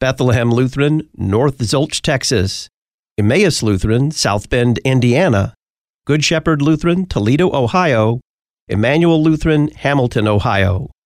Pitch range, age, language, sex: 115-160 Hz, 40-59, English, male